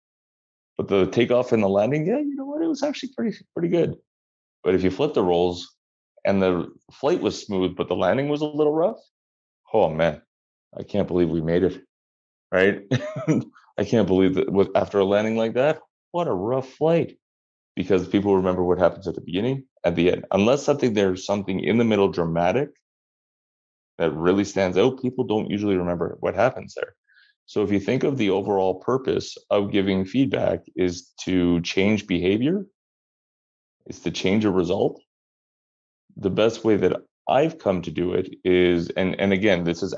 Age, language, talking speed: 30-49, English, 180 wpm